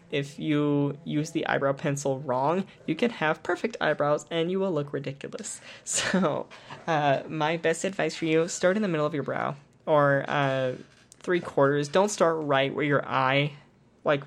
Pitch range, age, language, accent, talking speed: 135-160 Hz, 10-29, English, American, 175 wpm